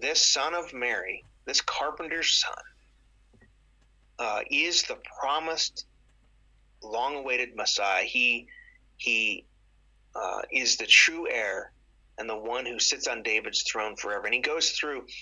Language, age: English, 30-49